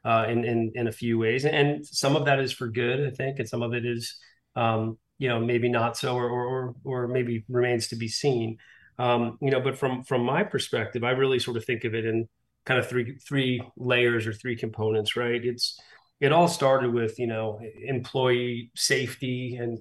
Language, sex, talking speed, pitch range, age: English, male, 210 wpm, 115-130 Hz, 30-49